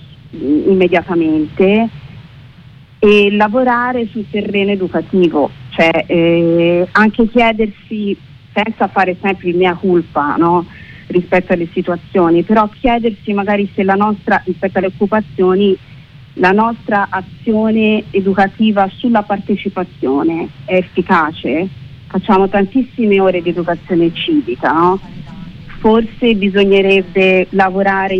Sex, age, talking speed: female, 40-59, 100 wpm